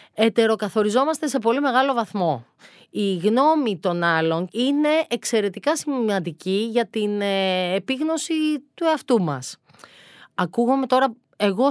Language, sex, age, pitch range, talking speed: Greek, female, 30-49, 160-235 Hz, 110 wpm